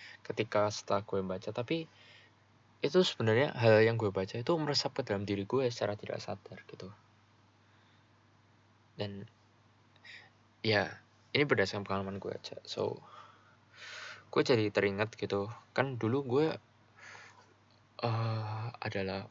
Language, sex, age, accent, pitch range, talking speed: Indonesian, male, 20-39, native, 100-115 Hz, 120 wpm